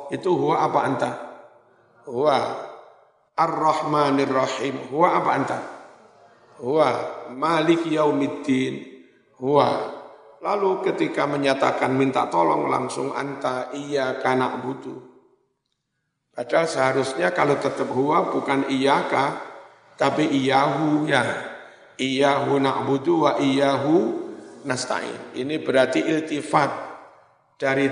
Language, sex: Indonesian, male